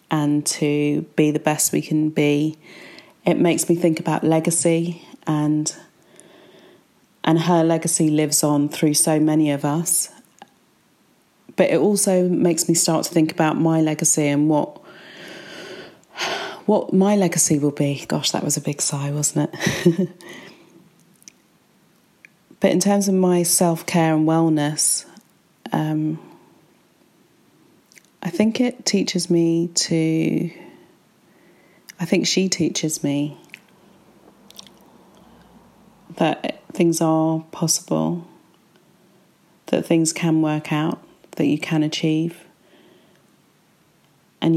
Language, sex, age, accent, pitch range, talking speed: English, female, 30-49, British, 155-175 Hz, 115 wpm